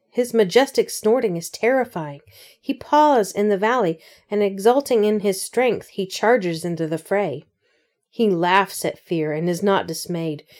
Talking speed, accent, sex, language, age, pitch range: 160 wpm, American, female, English, 40-59, 175-230 Hz